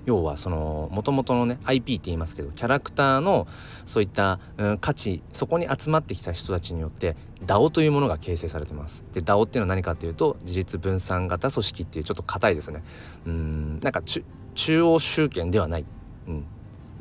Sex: male